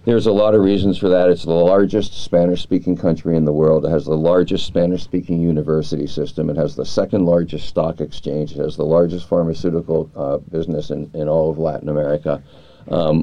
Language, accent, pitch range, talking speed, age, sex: English, American, 80-100 Hz, 195 wpm, 50-69, male